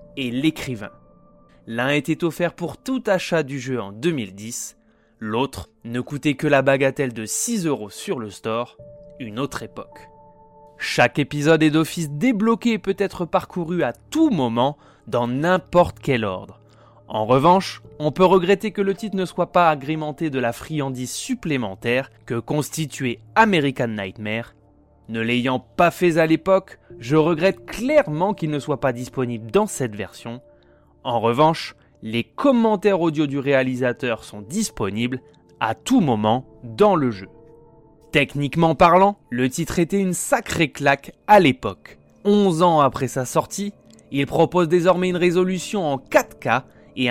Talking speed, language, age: 150 wpm, French, 20-39